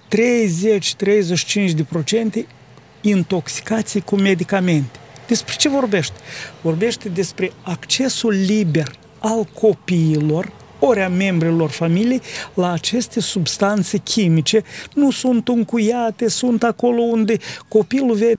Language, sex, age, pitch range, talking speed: Romanian, male, 40-59, 175-235 Hz, 95 wpm